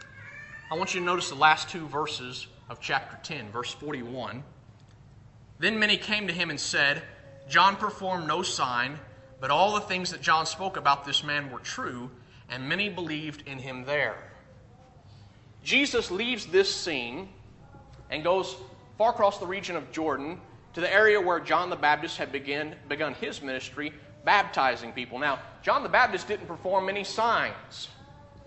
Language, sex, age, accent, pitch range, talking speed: English, male, 30-49, American, 135-195 Hz, 160 wpm